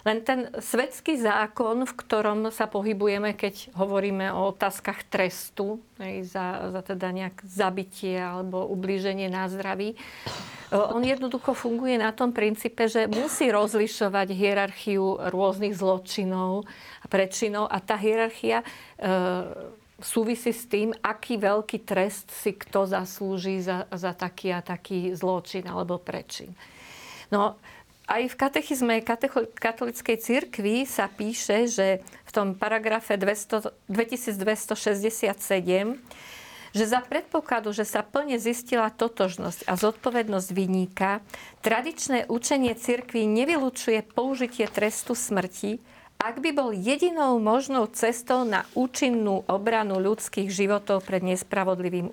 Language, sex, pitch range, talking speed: Slovak, female, 195-235 Hz, 115 wpm